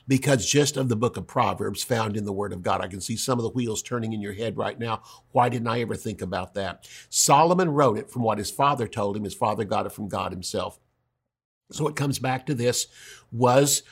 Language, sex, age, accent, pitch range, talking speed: English, male, 50-69, American, 110-140 Hz, 240 wpm